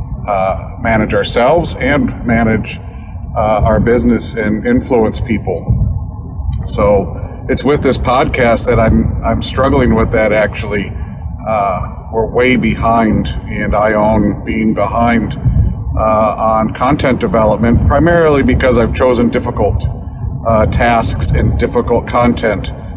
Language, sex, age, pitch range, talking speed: English, male, 50-69, 100-120 Hz, 120 wpm